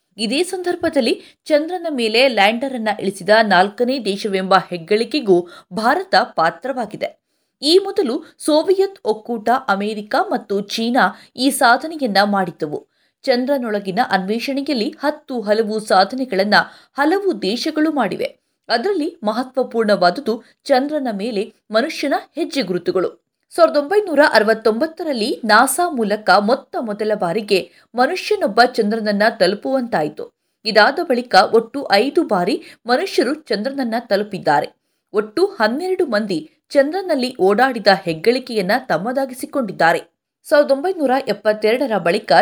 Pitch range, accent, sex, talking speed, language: 210-300 Hz, native, female, 95 wpm, Kannada